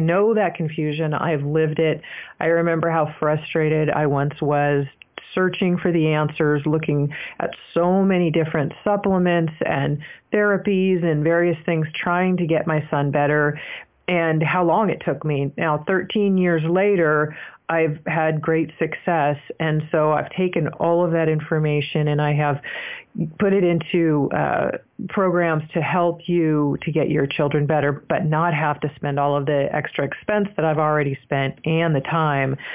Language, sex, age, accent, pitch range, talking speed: English, female, 40-59, American, 150-175 Hz, 165 wpm